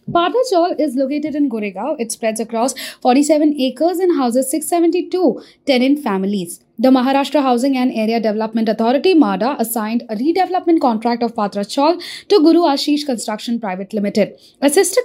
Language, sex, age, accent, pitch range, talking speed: English, female, 20-39, Indian, 225-305 Hz, 150 wpm